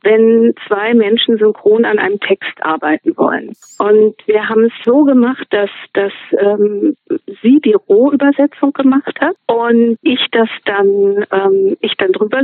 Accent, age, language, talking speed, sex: German, 50-69, German, 150 wpm, female